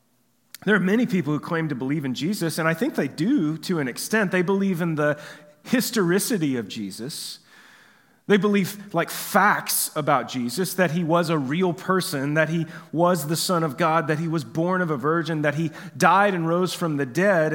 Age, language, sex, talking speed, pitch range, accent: 30-49, English, male, 200 wpm, 160-210 Hz, American